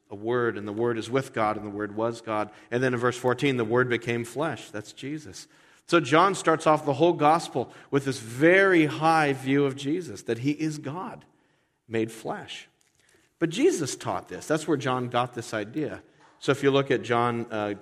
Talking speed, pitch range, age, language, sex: 205 wpm, 115-150 Hz, 40-59, English, male